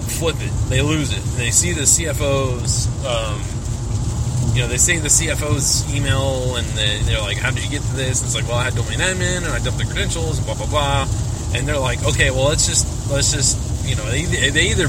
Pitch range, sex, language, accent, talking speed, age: 110-125 Hz, male, English, American, 235 wpm, 20-39